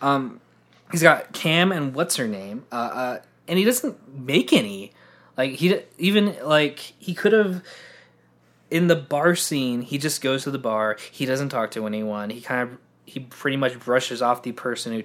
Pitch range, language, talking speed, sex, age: 130-180 Hz, English, 190 wpm, male, 20-39